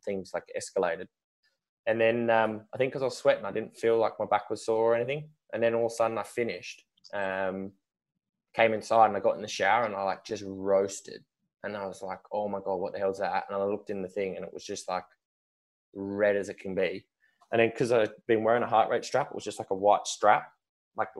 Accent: Australian